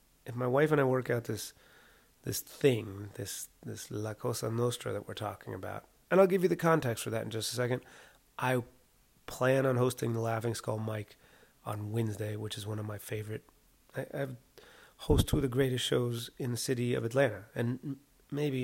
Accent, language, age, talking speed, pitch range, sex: American, English, 30-49, 200 wpm, 110-135 Hz, male